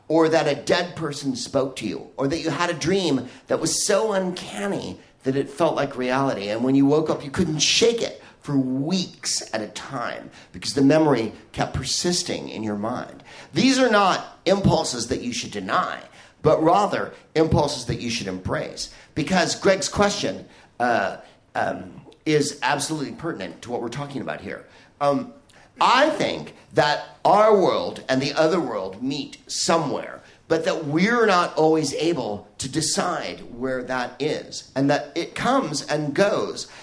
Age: 50-69